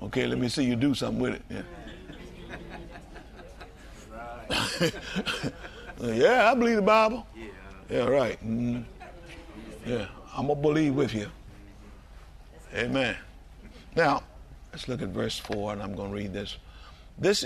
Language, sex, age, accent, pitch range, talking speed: English, male, 50-69, American, 90-140 Hz, 135 wpm